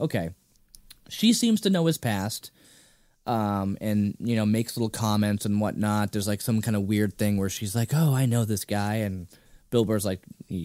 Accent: American